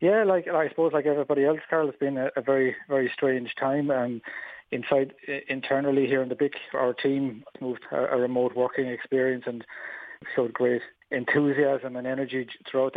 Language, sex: English, male